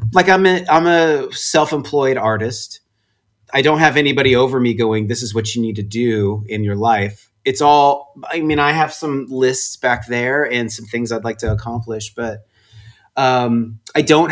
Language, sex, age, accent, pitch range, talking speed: English, male, 30-49, American, 110-130 Hz, 200 wpm